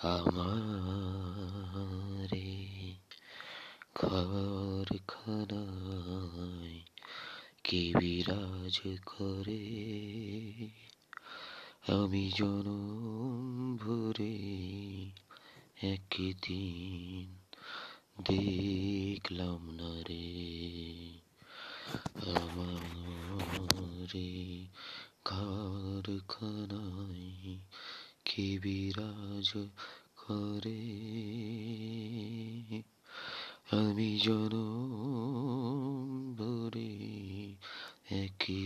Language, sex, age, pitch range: Bengali, male, 30-49, 95-110 Hz